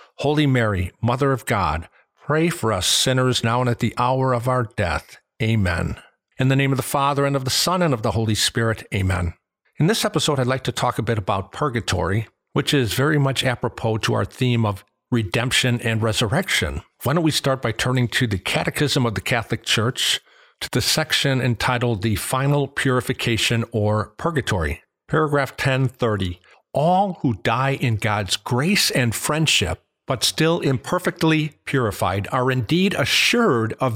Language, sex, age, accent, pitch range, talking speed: English, male, 50-69, American, 115-145 Hz, 170 wpm